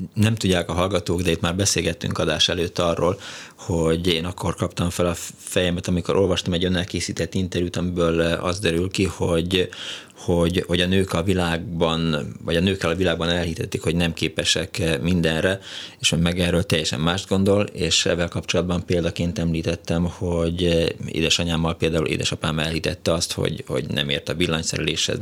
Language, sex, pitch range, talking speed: Hungarian, male, 85-95 Hz, 160 wpm